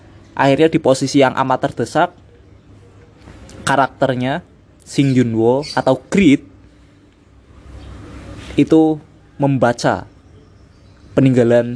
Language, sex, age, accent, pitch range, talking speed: Indonesian, male, 20-39, native, 100-135 Hz, 75 wpm